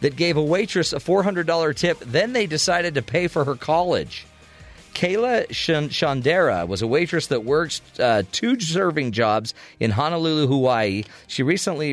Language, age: English, 40-59